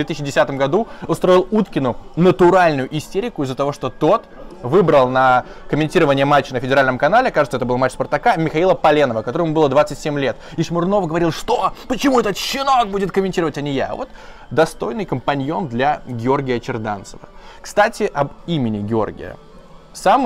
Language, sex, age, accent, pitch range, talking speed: Russian, male, 20-39, native, 125-165 Hz, 155 wpm